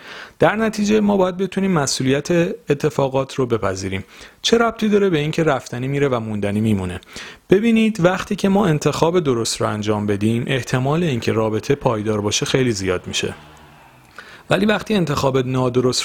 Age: 40-59